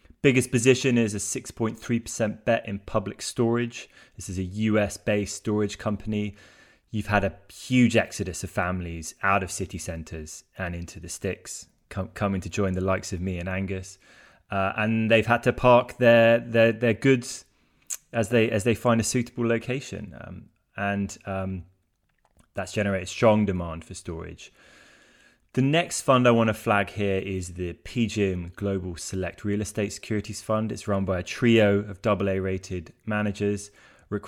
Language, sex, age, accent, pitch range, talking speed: English, male, 20-39, British, 95-115 Hz, 165 wpm